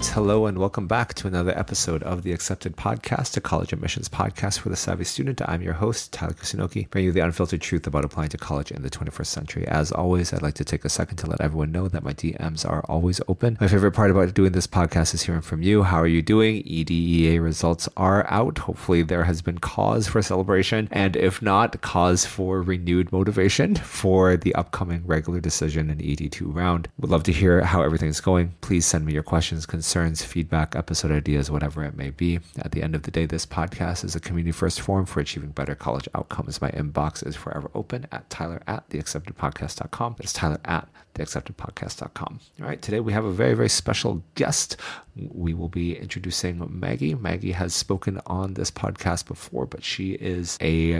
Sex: male